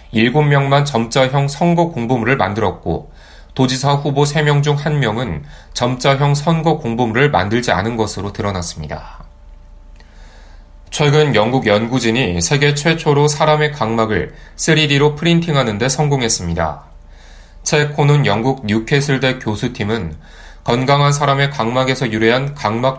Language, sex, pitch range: Korean, male, 105-140 Hz